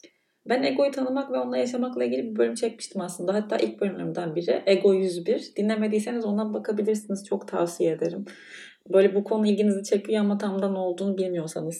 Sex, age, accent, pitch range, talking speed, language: female, 30-49, native, 175-215 Hz, 165 wpm, Turkish